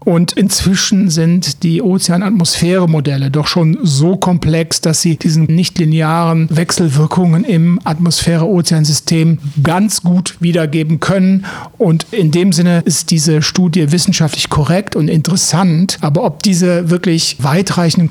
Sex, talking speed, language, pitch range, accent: male, 125 wpm, German, 160-185 Hz, German